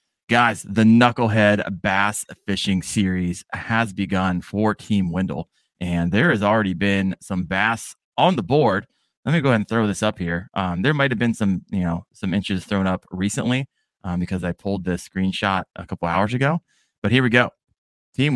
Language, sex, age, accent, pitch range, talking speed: English, male, 20-39, American, 95-120 Hz, 190 wpm